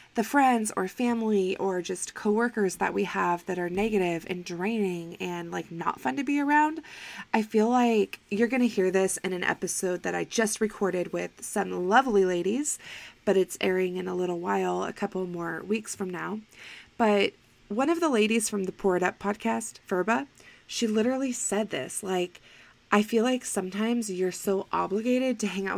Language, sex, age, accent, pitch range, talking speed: English, female, 20-39, American, 185-230 Hz, 190 wpm